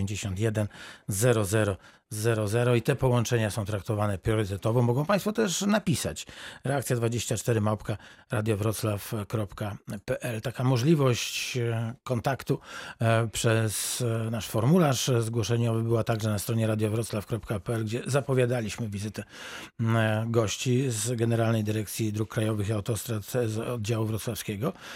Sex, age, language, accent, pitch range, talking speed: male, 40-59, Polish, native, 110-135 Hz, 95 wpm